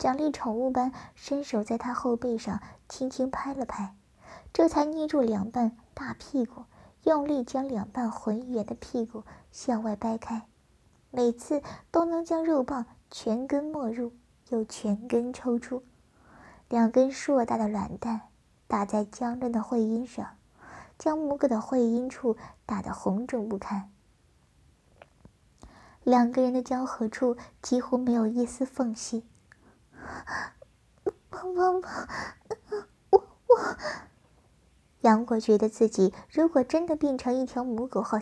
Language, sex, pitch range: Chinese, male, 230-275 Hz